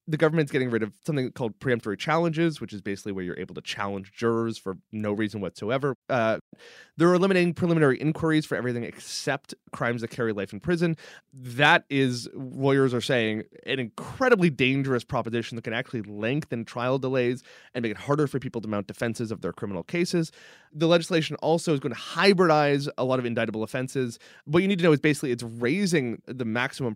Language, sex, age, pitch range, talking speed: English, male, 20-39, 115-155 Hz, 195 wpm